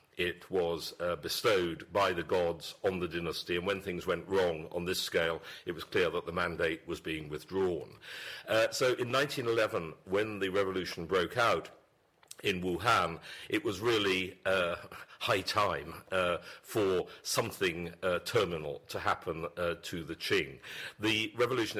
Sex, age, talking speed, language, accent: male, 50-69, 155 wpm, English, British